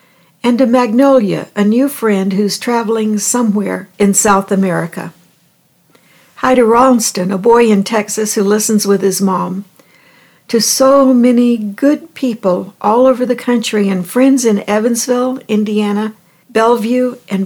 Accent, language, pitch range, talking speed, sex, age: American, English, 190-235 Hz, 140 wpm, female, 60-79